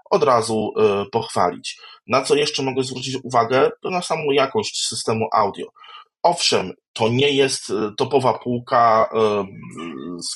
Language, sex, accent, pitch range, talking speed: Polish, male, native, 115-140 Hz, 125 wpm